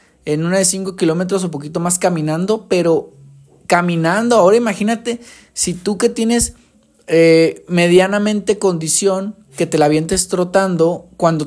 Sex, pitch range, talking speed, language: male, 160-205 Hz, 135 wpm, Spanish